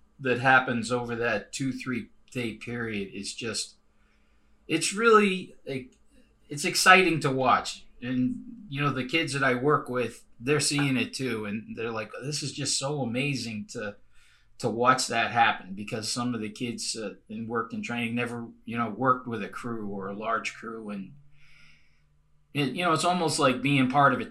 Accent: American